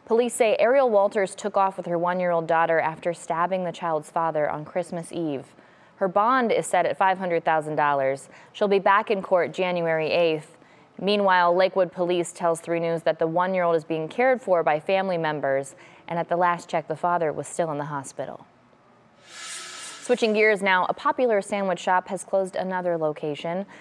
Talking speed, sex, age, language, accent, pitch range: 175 wpm, female, 20-39, English, American, 165-200 Hz